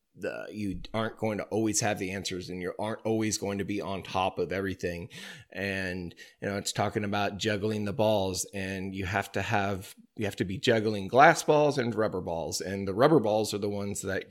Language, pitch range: English, 95-125 Hz